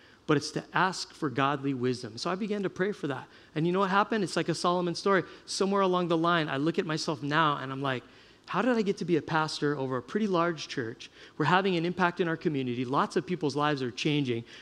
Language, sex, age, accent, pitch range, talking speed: English, male, 30-49, American, 145-200 Hz, 255 wpm